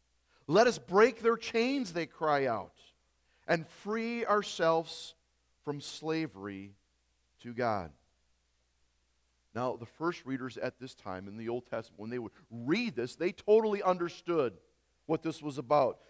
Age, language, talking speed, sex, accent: 40-59, English, 140 wpm, male, American